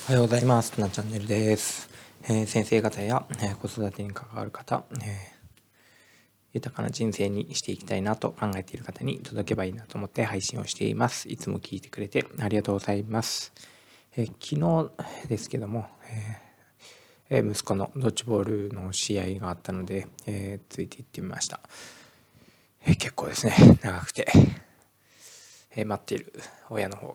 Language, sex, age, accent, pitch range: Japanese, male, 20-39, native, 100-115 Hz